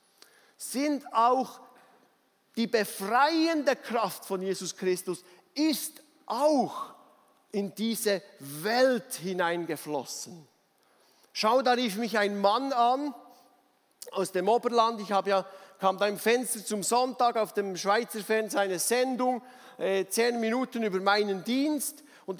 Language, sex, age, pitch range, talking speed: German, male, 50-69, 215-275 Hz, 120 wpm